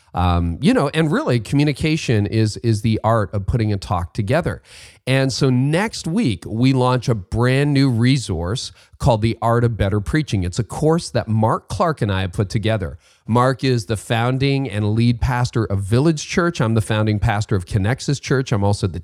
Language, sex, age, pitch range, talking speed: English, male, 40-59, 105-135 Hz, 195 wpm